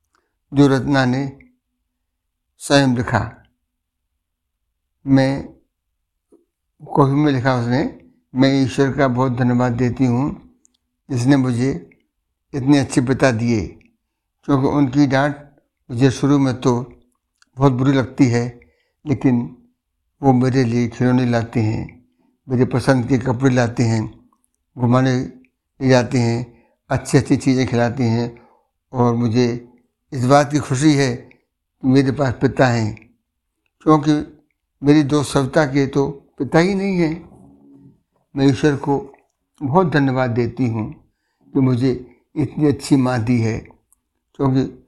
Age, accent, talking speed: 60-79, native, 125 wpm